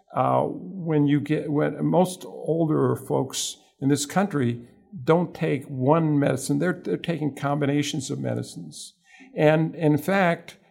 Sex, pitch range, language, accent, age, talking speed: male, 135-160 Hz, English, American, 50-69, 135 wpm